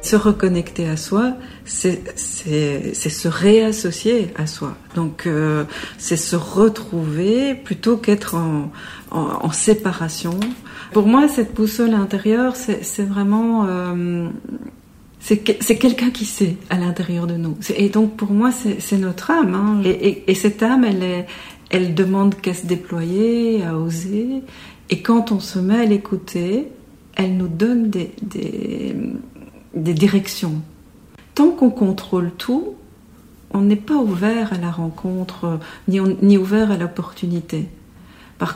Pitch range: 175-220 Hz